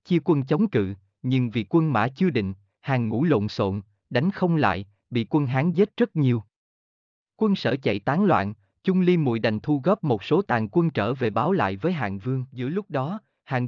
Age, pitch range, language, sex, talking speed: 20-39, 110-160 Hz, Vietnamese, male, 215 wpm